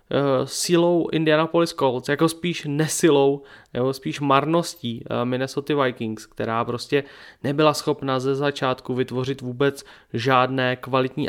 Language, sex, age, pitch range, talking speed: Slovak, male, 30-49, 130-160 Hz, 110 wpm